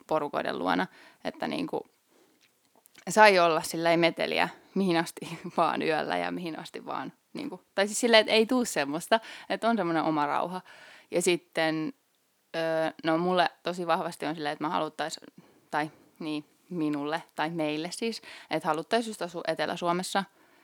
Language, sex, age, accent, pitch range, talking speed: Finnish, female, 20-39, native, 160-190 Hz, 155 wpm